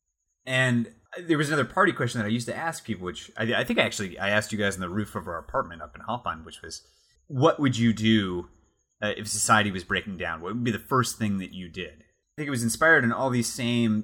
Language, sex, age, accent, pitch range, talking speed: English, male, 30-49, American, 95-120 Hz, 255 wpm